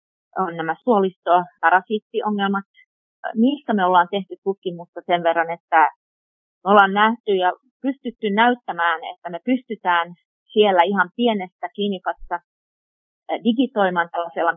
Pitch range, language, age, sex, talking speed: 175-235 Hz, Finnish, 30-49, female, 105 wpm